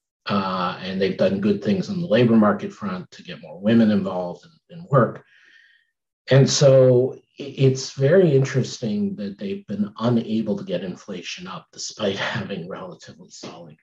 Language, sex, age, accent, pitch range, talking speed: English, male, 50-69, American, 115-185 Hz, 155 wpm